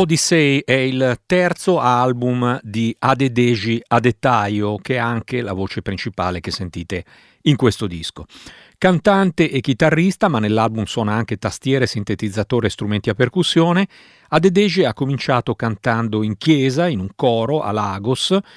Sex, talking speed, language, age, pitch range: male, 145 wpm, Italian, 50-69, 110-150 Hz